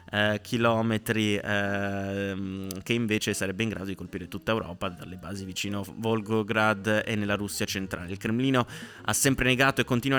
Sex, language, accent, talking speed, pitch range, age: male, Italian, native, 160 wpm, 100-115 Hz, 20-39